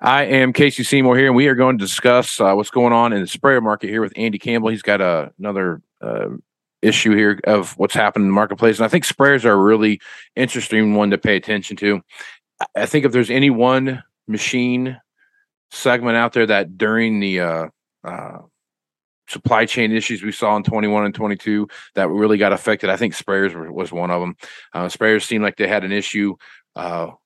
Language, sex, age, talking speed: English, male, 40-59, 210 wpm